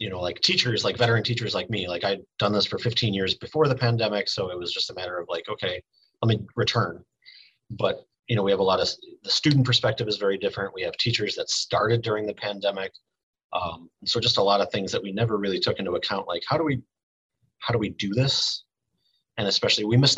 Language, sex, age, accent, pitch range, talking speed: English, male, 30-49, American, 95-120 Hz, 240 wpm